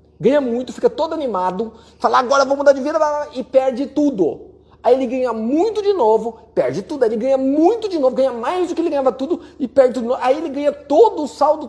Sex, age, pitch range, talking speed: male, 30-49, 210-280 Hz, 235 wpm